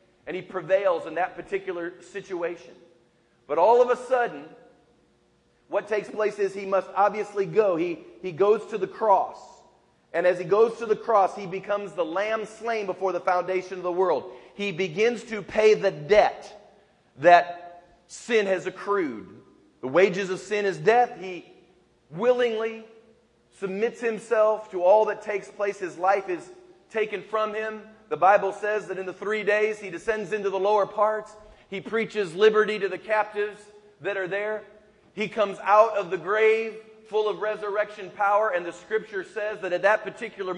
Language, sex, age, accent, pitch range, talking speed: English, male, 40-59, American, 195-220 Hz, 170 wpm